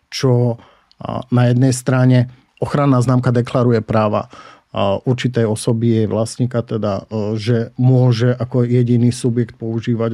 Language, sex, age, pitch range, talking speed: Slovak, male, 50-69, 115-125 Hz, 110 wpm